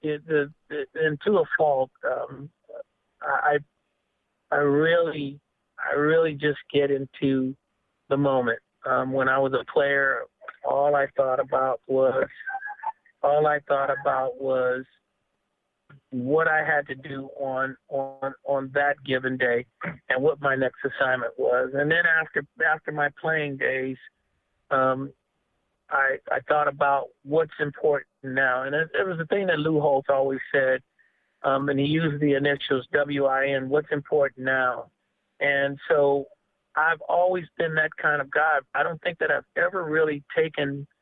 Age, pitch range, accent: 50-69, 135-155 Hz, American